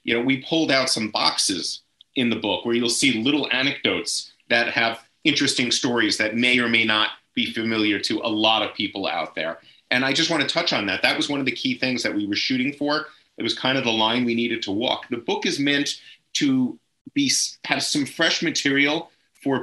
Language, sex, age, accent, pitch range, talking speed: English, male, 30-49, American, 115-145 Hz, 225 wpm